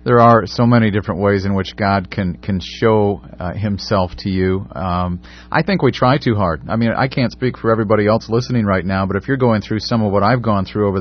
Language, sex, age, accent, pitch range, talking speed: English, male, 40-59, American, 95-125 Hz, 250 wpm